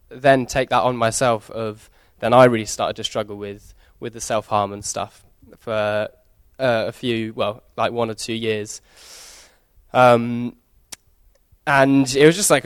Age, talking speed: 10-29, 160 wpm